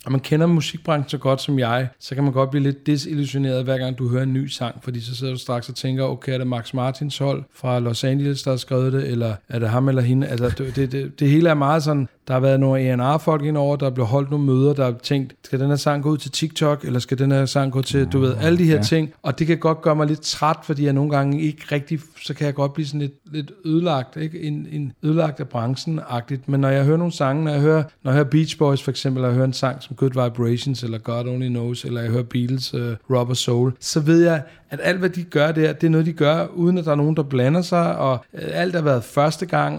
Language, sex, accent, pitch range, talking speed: Danish, male, native, 130-155 Hz, 275 wpm